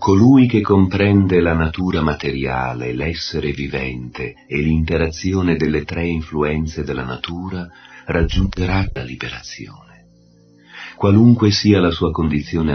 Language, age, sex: Italian, 40-59, male